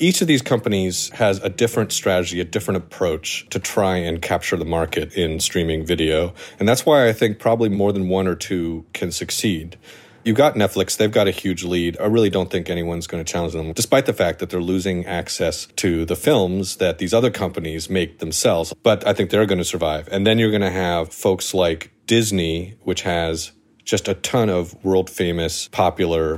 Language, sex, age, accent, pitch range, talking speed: English, male, 30-49, American, 85-100 Hz, 200 wpm